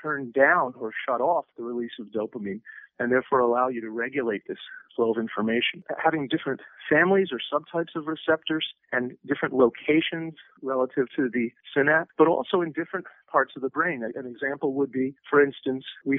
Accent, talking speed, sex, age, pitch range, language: American, 180 wpm, male, 40-59, 125-150 Hz, English